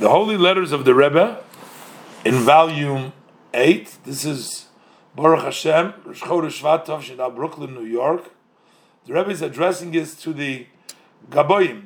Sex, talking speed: male, 135 wpm